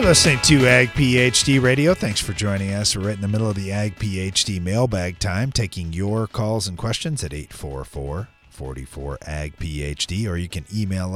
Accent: American